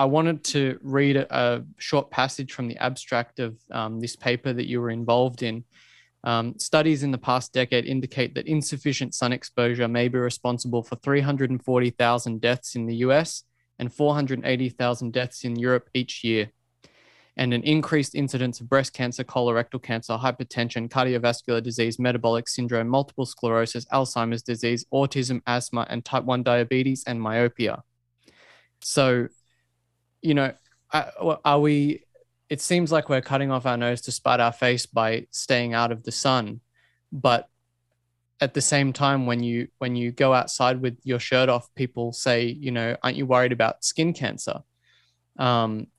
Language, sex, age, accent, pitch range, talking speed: English, male, 20-39, Australian, 120-135 Hz, 160 wpm